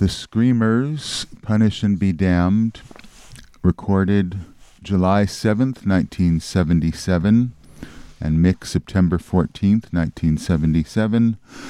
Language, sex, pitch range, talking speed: English, male, 80-95 Hz, 75 wpm